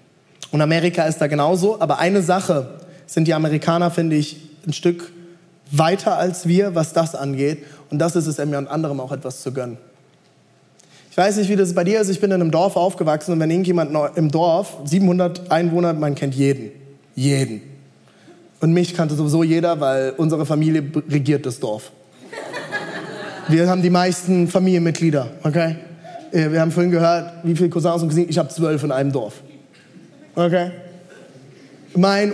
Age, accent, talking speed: 20-39, German, 170 wpm